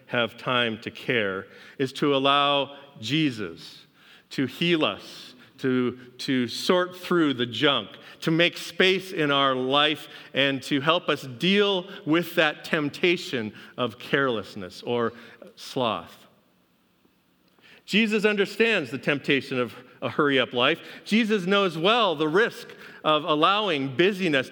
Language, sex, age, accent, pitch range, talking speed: English, male, 40-59, American, 130-180 Hz, 125 wpm